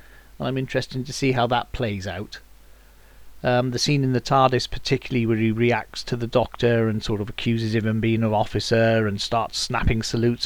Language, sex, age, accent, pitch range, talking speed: English, male, 40-59, British, 110-140 Hz, 200 wpm